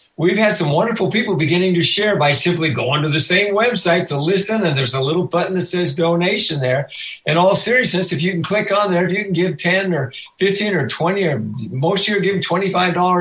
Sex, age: male, 60-79